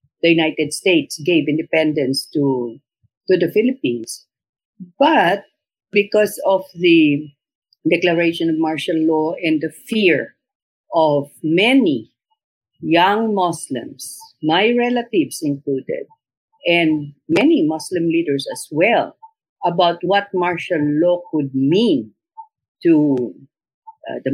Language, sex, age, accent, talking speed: English, female, 50-69, Filipino, 105 wpm